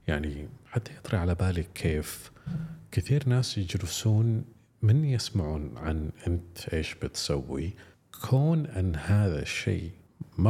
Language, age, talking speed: English, 50-69, 115 wpm